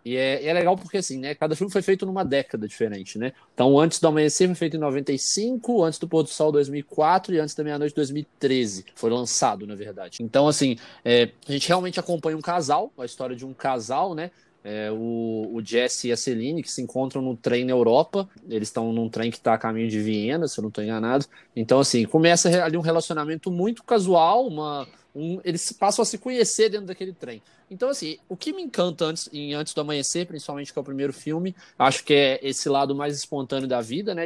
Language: Portuguese